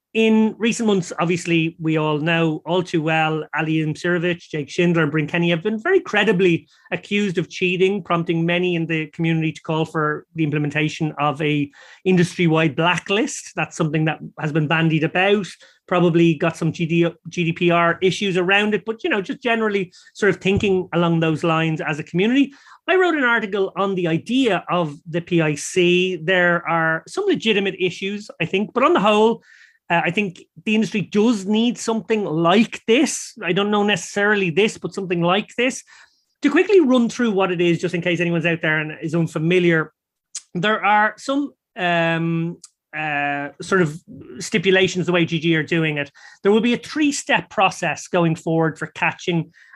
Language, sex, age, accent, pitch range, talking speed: English, male, 30-49, Irish, 165-210 Hz, 175 wpm